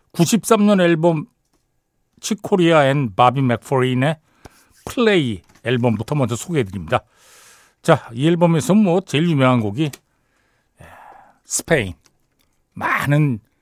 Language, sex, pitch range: Korean, male, 115-165 Hz